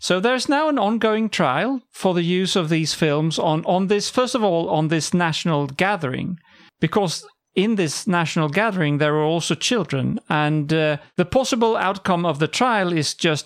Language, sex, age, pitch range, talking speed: English, male, 40-59, 145-195 Hz, 185 wpm